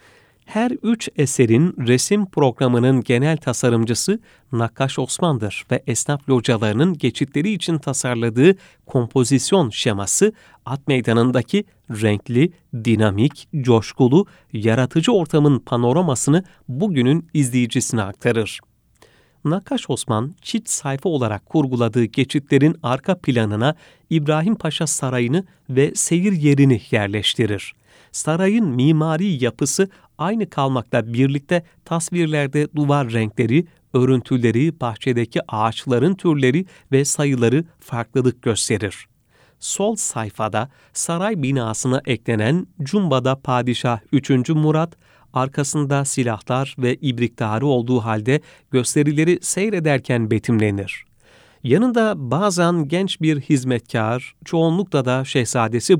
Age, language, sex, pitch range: 40-59, Turkish, male, 120-160 Hz